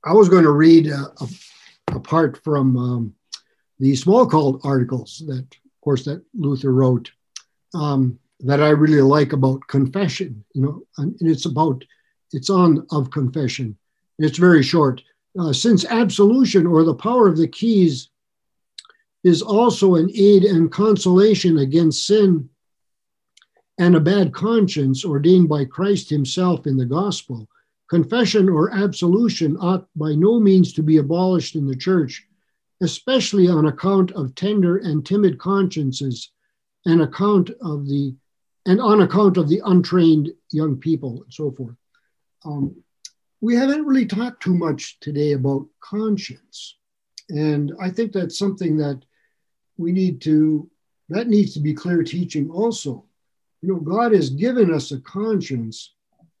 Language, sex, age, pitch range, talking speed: English, male, 60-79, 145-195 Hz, 145 wpm